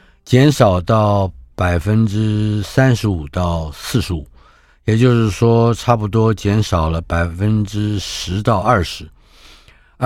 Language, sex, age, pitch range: Chinese, male, 60-79, 85-115 Hz